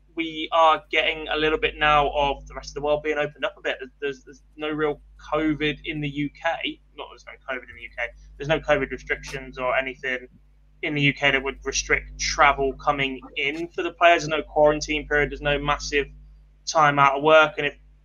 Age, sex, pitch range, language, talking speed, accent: 10-29, male, 130-150 Hz, English, 215 wpm, British